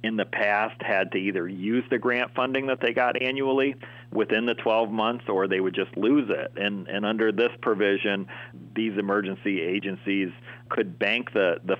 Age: 40-59